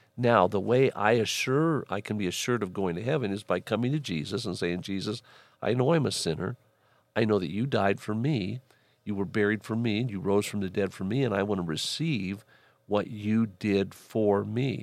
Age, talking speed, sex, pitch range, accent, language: 50-69, 225 wpm, male, 95-125 Hz, American, English